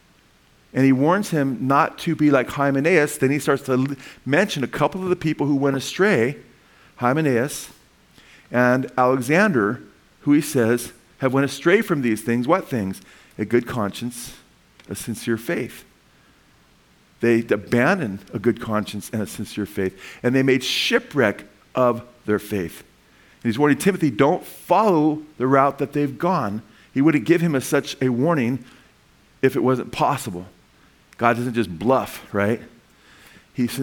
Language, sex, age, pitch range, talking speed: English, male, 50-69, 120-145 Hz, 155 wpm